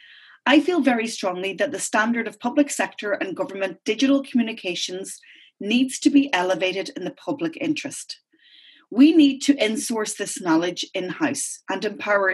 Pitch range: 205-290 Hz